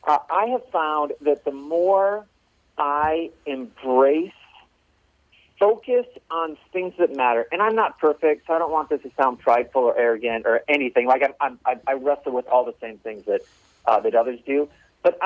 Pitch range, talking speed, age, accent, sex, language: 120-160 Hz, 185 wpm, 40-59, American, male, English